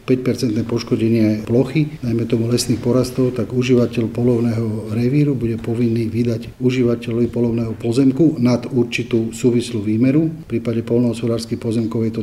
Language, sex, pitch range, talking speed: Slovak, male, 110-120 Hz, 130 wpm